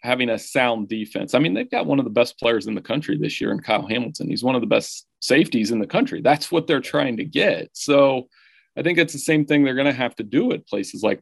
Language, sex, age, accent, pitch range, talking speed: English, male, 30-49, American, 115-140 Hz, 280 wpm